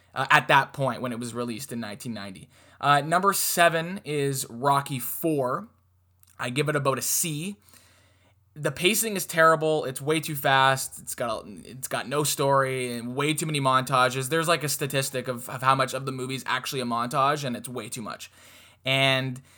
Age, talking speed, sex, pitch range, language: 20-39, 185 wpm, male, 120-150 Hz, English